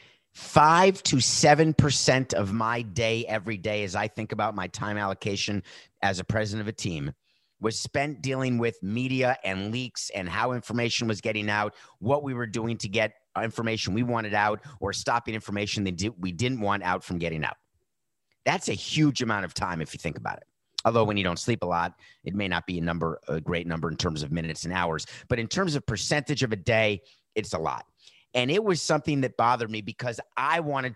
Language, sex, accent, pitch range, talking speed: English, male, American, 105-130 Hz, 210 wpm